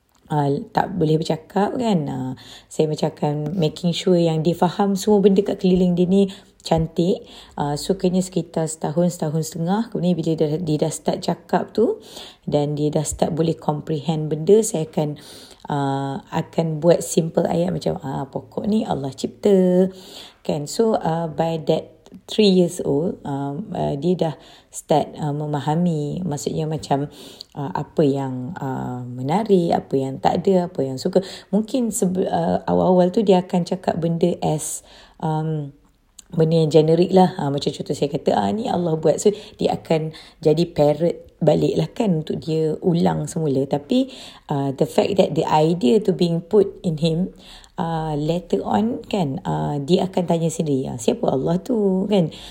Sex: female